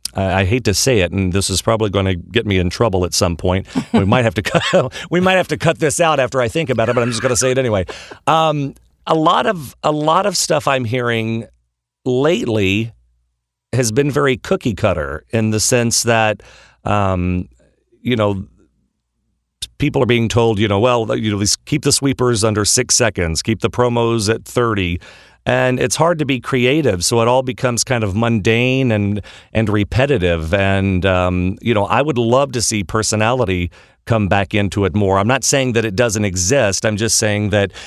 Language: English